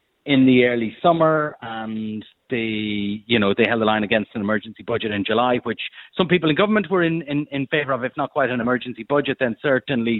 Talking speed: 220 wpm